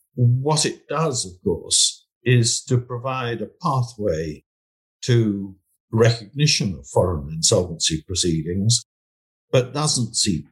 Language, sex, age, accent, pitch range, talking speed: English, male, 60-79, British, 95-130 Hz, 110 wpm